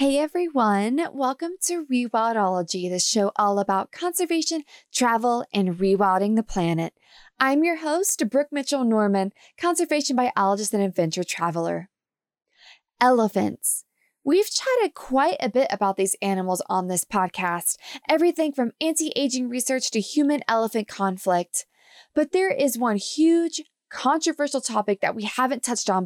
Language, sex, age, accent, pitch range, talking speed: English, female, 20-39, American, 210-305 Hz, 130 wpm